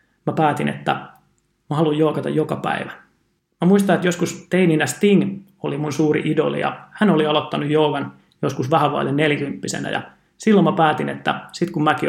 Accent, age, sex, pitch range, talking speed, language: native, 30-49, male, 145-170 Hz, 170 wpm, Finnish